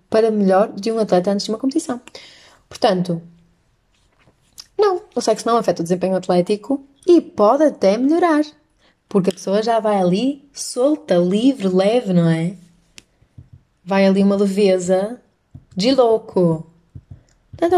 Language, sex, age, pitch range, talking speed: Portuguese, female, 20-39, 185-250 Hz, 135 wpm